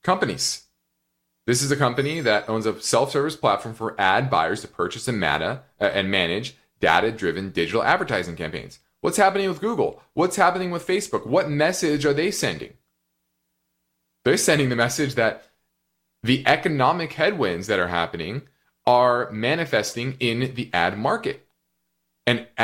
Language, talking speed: English, 145 wpm